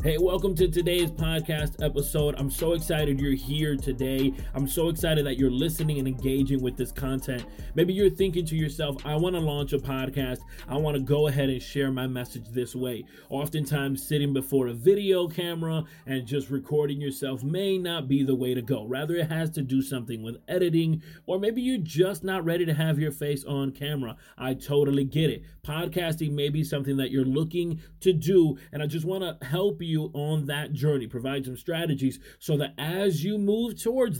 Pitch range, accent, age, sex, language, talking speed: 135-170 Hz, American, 30-49, male, English, 200 wpm